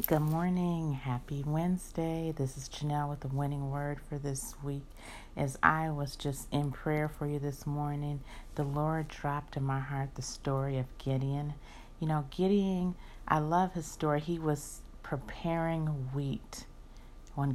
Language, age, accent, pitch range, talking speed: English, 50-69, American, 135-155 Hz, 155 wpm